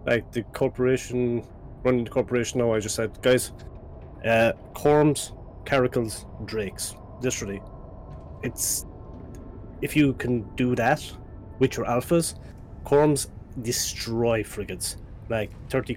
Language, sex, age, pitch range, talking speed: English, male, 30-49, 100-125 Hz, 115 wpm